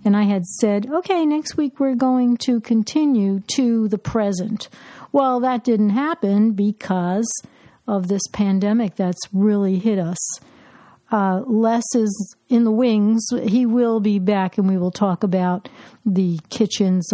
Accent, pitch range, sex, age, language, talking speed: American, 190-230 Hz, female, 60-79, English, 150 wpm